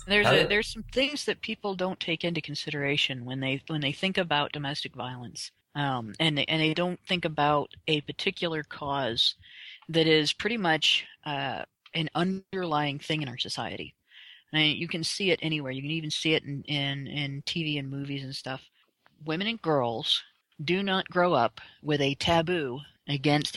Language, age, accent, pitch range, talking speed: English, 40-59, American, 140-170 Hz, 185 wpm